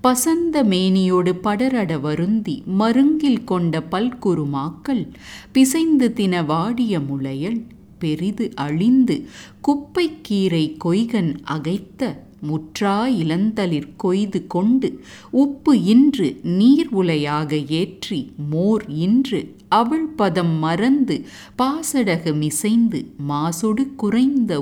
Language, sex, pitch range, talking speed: English, female, 160-245 Hz, 80 wpm